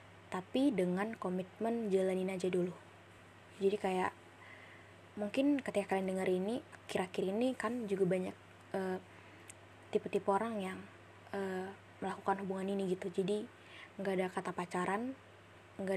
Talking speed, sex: 125 wpm, female